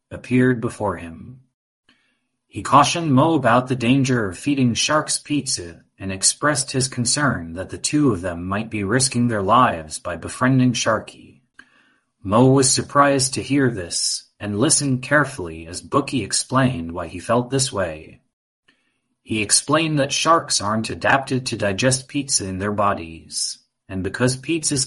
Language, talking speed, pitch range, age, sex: English, 150 wpm, 100-135 Hz, 30-49, male